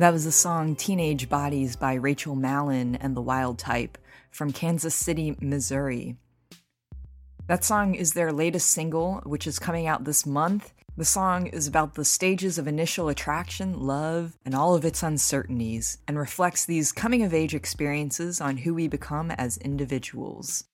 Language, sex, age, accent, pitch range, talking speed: English, female, 20-39, American, 140-170 Hz, 160 wpm